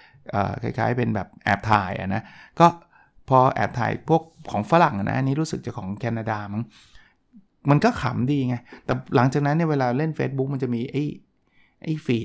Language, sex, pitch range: Thai, male, 115-145 Hz